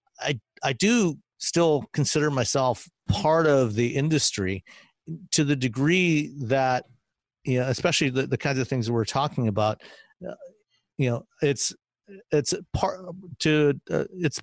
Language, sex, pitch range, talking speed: English, male, 120-145 Hz, 145 wpm